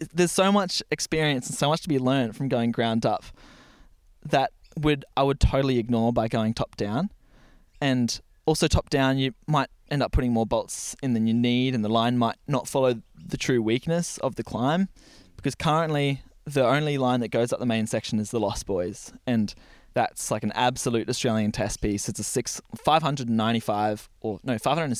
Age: 20-39